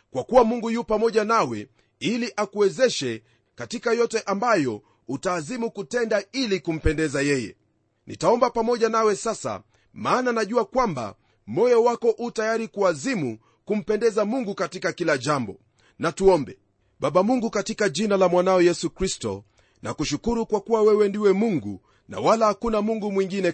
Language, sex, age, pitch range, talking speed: Swahili, male, 40-59, 185-225 Hz, 140 wpm